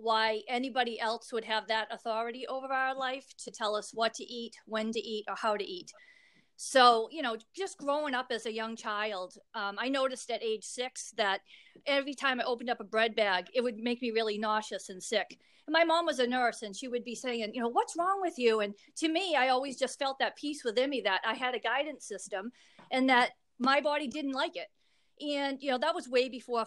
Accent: American